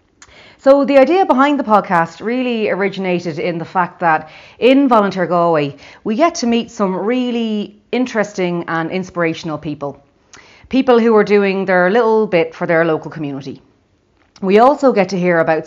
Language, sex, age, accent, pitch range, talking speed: English, female, 30-49, Irish, 165-240 Hz, 160 wpm